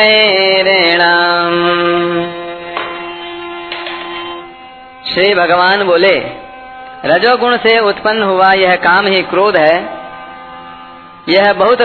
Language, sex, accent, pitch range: Hindi, female, native, 175-210 Hz